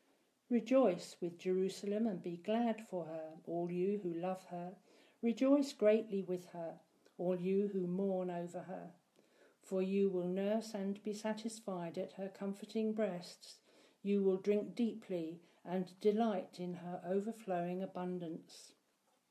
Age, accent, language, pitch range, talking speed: 50-69, British, English, 180-215 Hz, 135 wpm